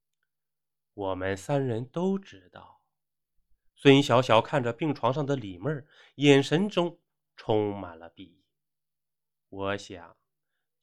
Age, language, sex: 20-39, Chinese, male